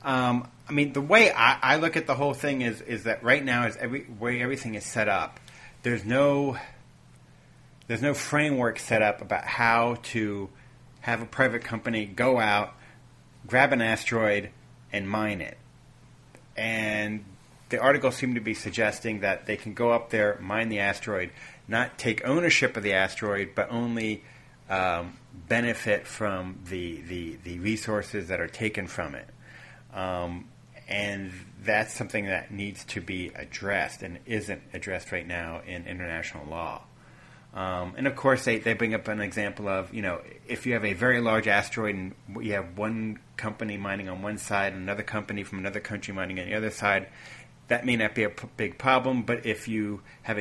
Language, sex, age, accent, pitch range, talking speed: English, male, 30-49, American, 100-125 Hz, 180 wpm